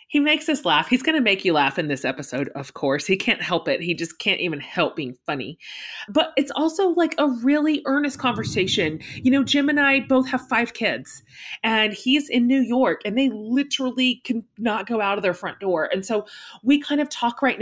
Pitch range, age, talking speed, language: 185-255 Hz, 30-49, 220 wpm, English